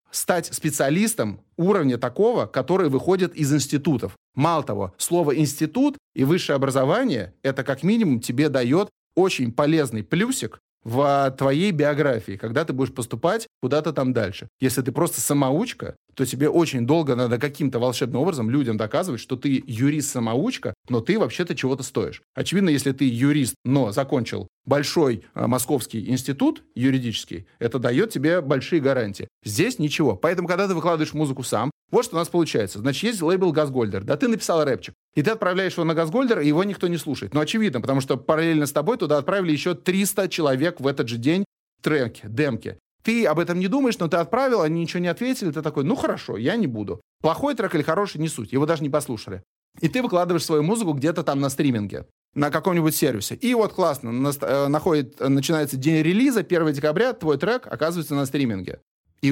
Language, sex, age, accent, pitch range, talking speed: Russian, male, 30-49, native, 130-175 Hz, 175 wpm